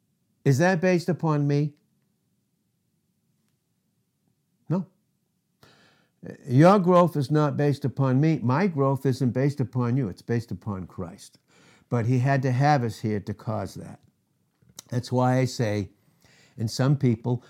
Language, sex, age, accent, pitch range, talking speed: English, male, 60-79, American, 130-185 Hz, 135 wpm